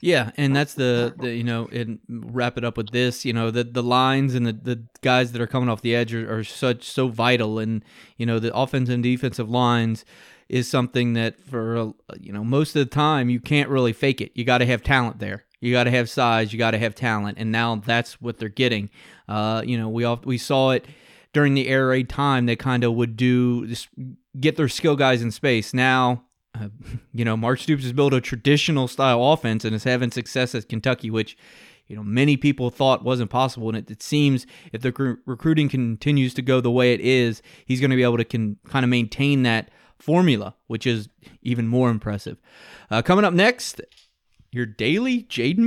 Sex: male